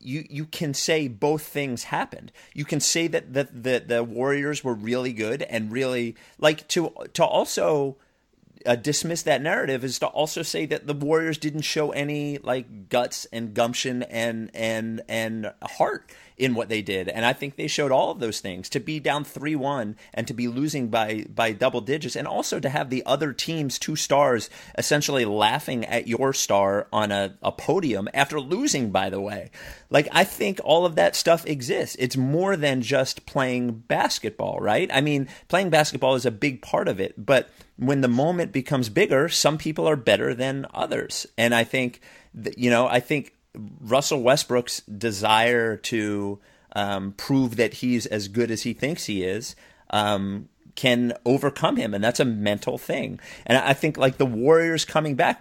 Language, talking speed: English, 185 wpm